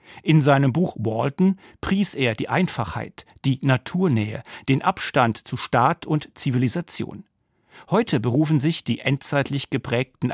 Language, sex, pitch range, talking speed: German, male, 120-160 Hz, 130 wpm